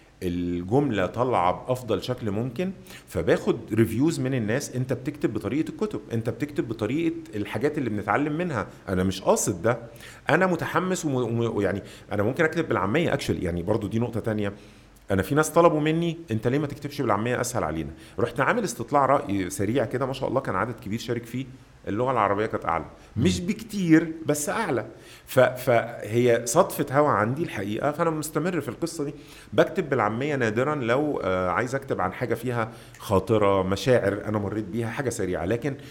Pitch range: 105-150 Hz